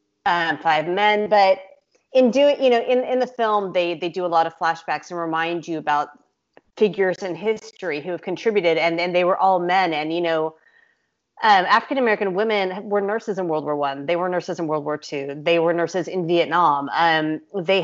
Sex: female